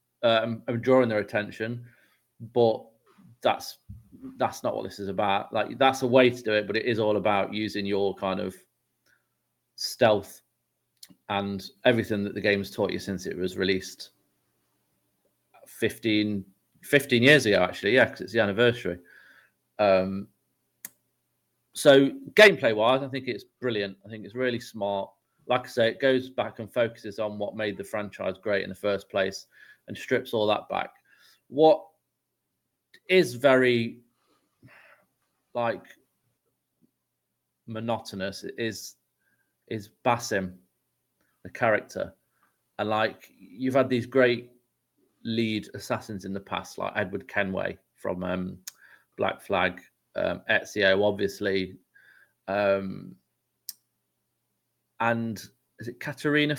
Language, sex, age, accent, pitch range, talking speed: English, male, 30-49, British, 100-125 Hz, 130 wpm